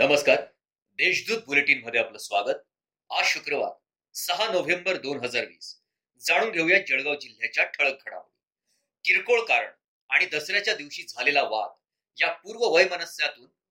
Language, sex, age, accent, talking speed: Marathi, male, 30-49, native, 130 wpm